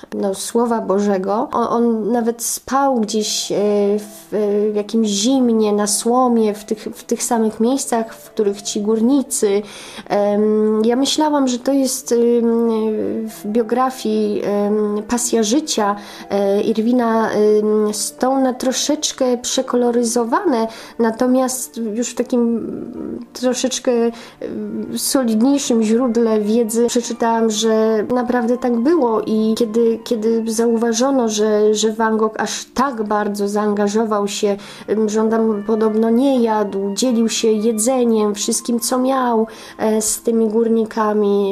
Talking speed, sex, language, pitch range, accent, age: 120 wpm, female, Polish, 215-240 Hz, native, 20-39